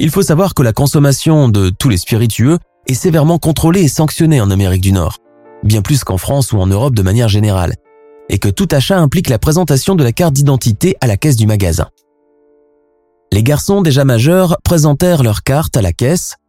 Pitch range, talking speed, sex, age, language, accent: 100-150 Hz, 200 wpm, male, 20-39, French, French